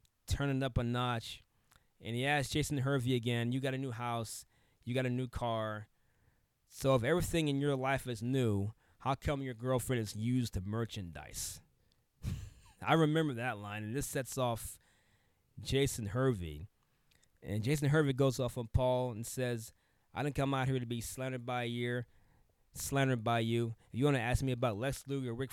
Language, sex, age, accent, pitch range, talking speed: English, male, 20-39, American, 110-135 Hz, 185 wpm